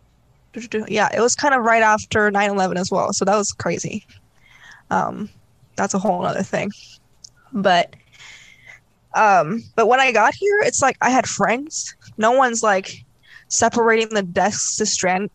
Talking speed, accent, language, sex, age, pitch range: 155 wpm, American, English, female, 20-39, 190-245 Hz